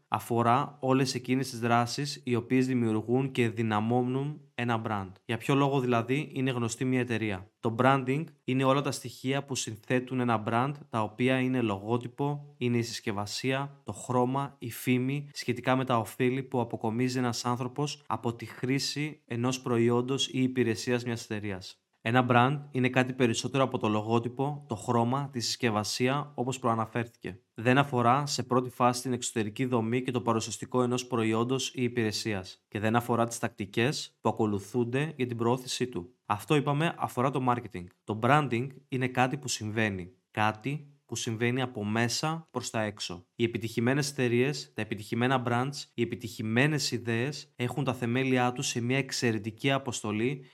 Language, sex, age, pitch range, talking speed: Greek, male, 20-39, 115-130 Hz, 160 wpm